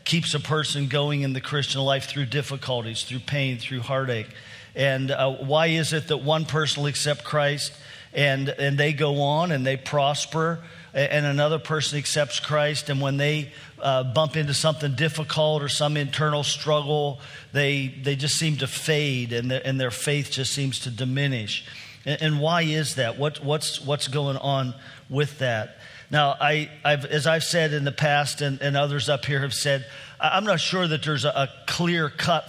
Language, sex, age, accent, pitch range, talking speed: English, male, 50-69, American, 130-150 Hz, 185 wpm